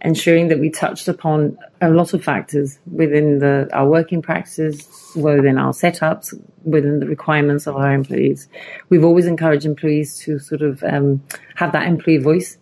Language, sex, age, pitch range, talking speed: English, female, 30-49, 150-170 Hz, 165 wpm